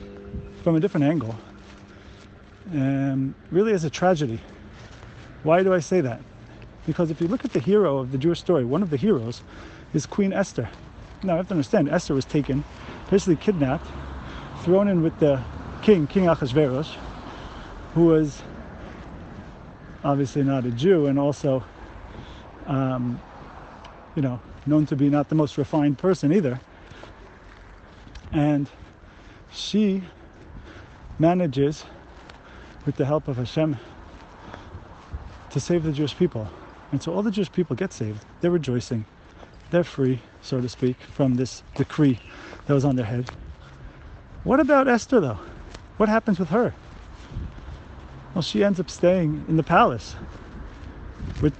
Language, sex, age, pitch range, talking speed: English, male, 40-59, 100-160 Hz, 140 wpm